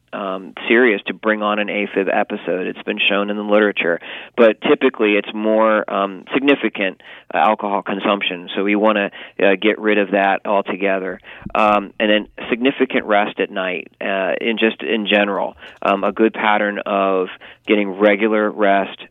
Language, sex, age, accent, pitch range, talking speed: English, male, 40-59, American, 100-110 Hz, 170 wpm